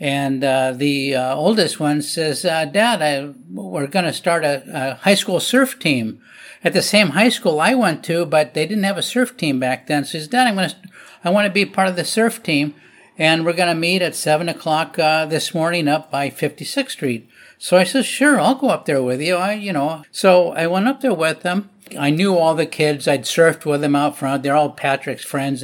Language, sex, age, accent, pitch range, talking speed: English, male, 50-69, American, 150-200 Hz, 245 wpm